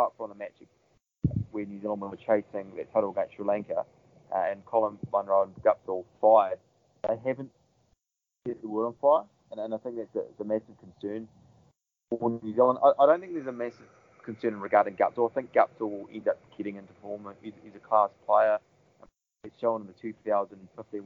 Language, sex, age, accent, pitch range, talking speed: English, male, 20-39, British, 105-120 Hz, 195 wpm